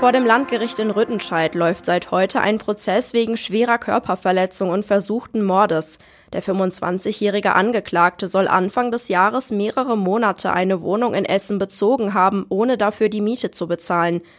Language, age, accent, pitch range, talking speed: German, 20-39, German, 180-230 Hz, 155 wpm